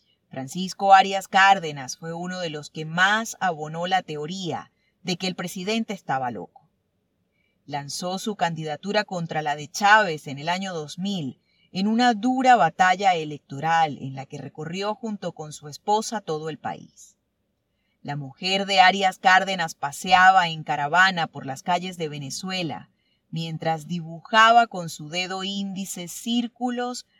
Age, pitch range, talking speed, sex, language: 30-49, 155-200 Hz, 145 wpm, female, Spanish